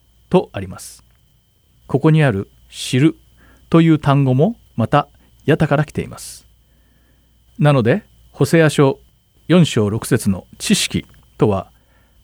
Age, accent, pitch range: 40-59, native, 110-150 Hz